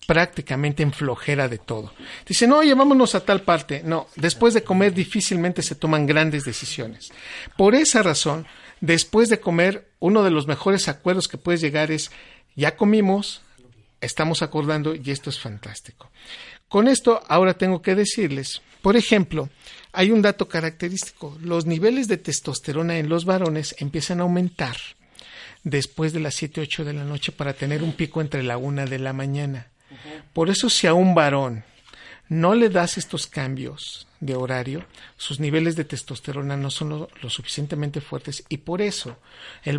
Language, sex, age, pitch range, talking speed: Spanish, male, 50-69, 140-175 Hz, 165 wpm